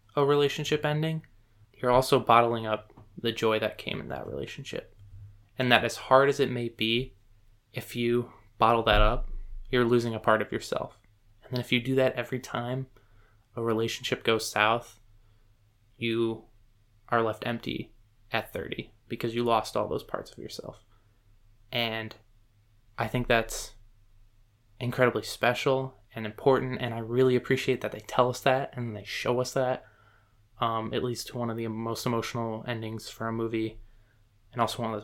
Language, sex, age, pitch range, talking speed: English, male, 20-39, 105-120 Hz, 170 wpm